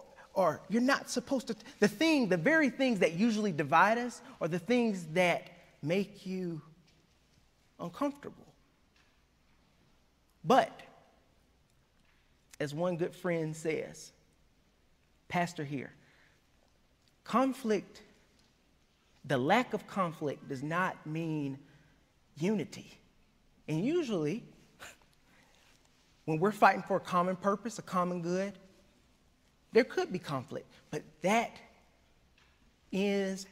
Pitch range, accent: 160-210 Hz, American